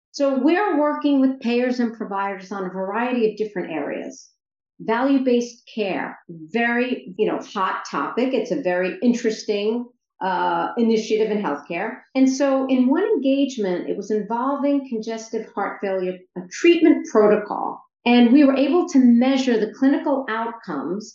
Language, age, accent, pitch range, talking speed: English, 50-69, American, 210-275 Hz, 140 wpm